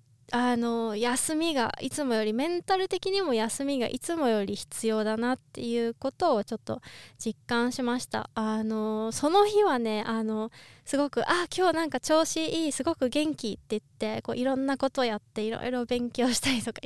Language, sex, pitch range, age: Japanese, female, 215-275 Hz, 20-39